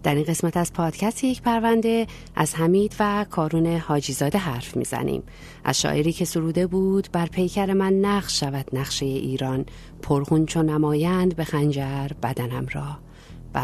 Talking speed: 150 wpm